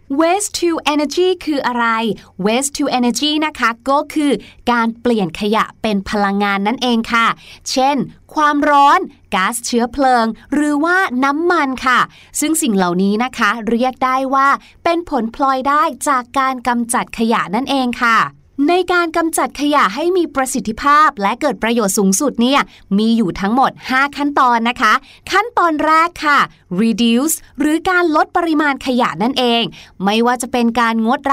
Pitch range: 230-295 Hz